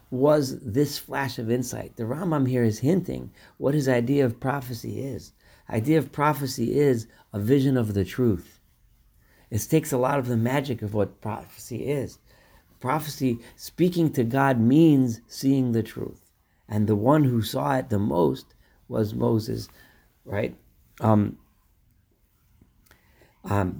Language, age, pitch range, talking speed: English, 50-69, 100-130 Hz, 145 wpm